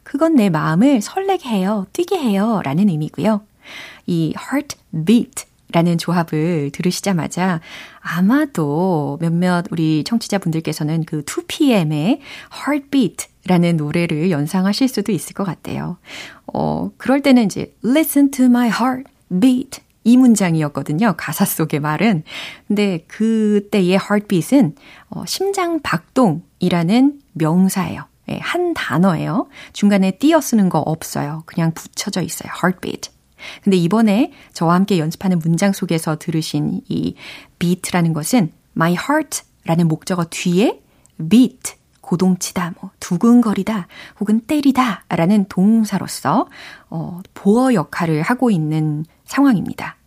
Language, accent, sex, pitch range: Korean, native, female, 165-250 Hz